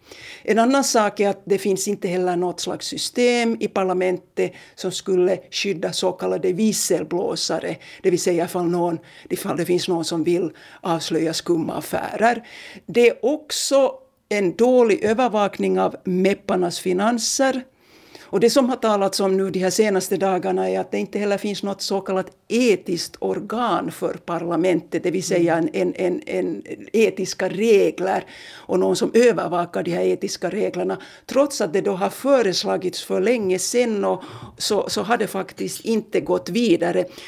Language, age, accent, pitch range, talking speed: Swedish, 60-79, Finnish, 180-230 Hz, 165 wpm